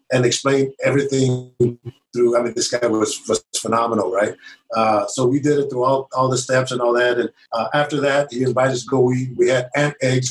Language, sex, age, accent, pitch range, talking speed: English, male, 50-69, American, 125-150 Hz, 225 wpm